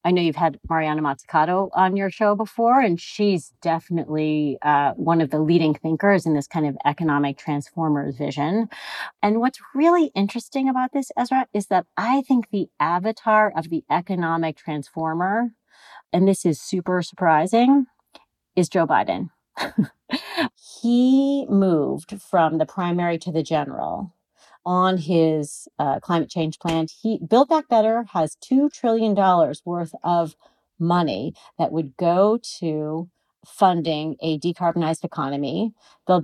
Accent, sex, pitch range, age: American, female, 155-200 Hz, 40-59